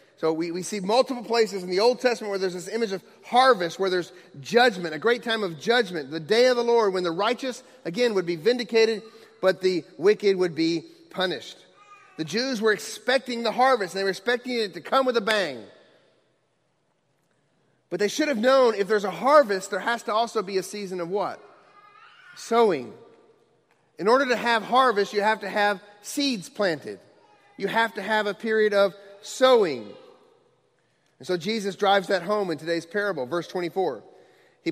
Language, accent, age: English, American, 40-59